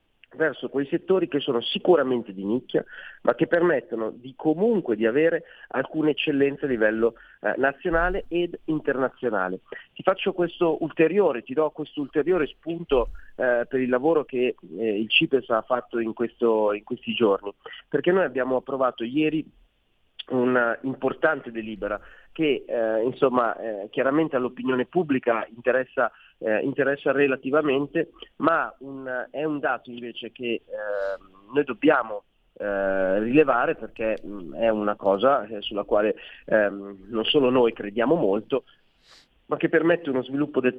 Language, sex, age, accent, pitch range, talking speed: Italian, male, 30-49, native, 115-150 Hz, 145 wpm